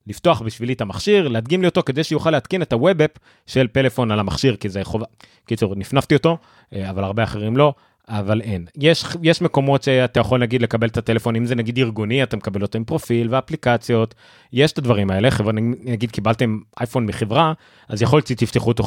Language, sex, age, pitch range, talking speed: Hebrew, male, 30-49, 110-135 Hz, 190 wpm